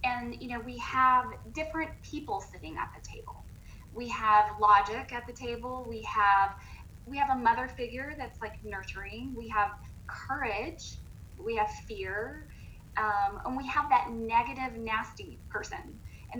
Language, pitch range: English, 215-280 Hz